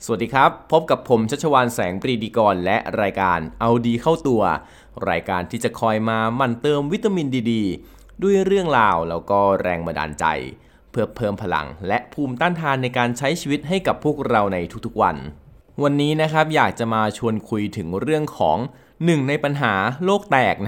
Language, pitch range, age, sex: Thai, 100-140 Hz, 20-39, male